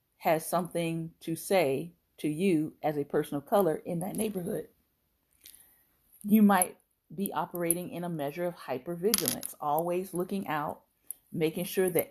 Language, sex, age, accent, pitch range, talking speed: English, female, 40-59, American, 160-200 Hz, 145 wpm